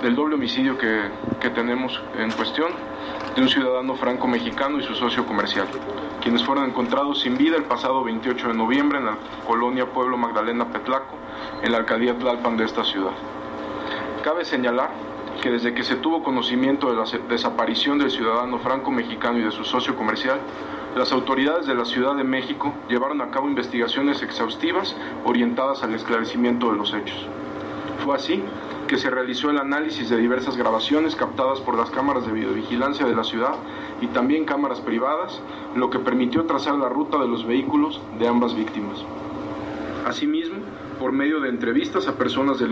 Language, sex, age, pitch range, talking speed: Spanish, male, 40-59, 115-140 Hz, 165 wpm